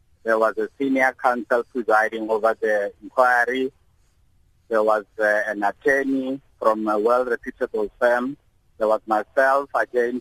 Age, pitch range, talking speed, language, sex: 50-69, 105-125 Hz, 130 wpm, English, male